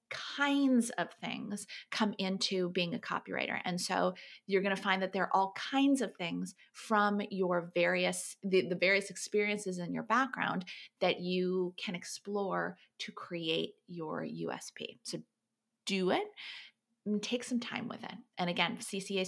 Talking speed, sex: 155 wpm, female